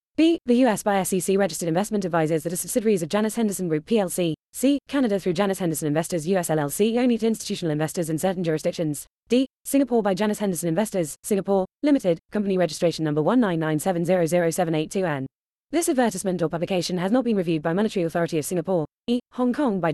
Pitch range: 170-220 Hz